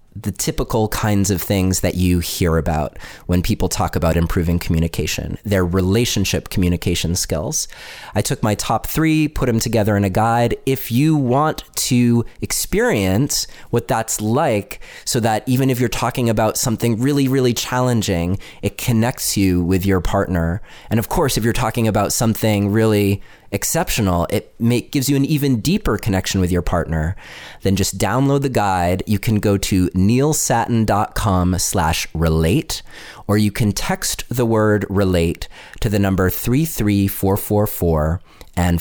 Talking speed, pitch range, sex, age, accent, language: 155 wpm, 90-120 Hz, male, 30-49, American, English